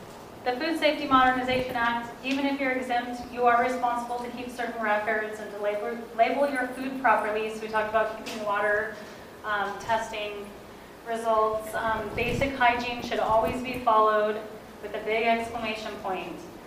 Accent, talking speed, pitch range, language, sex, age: American, 160 wpm, 215-245 Hz, English, female, 30-49